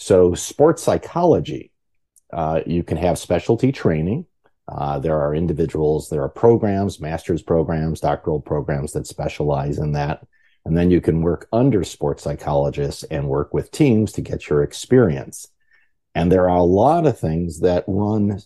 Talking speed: 160 wpm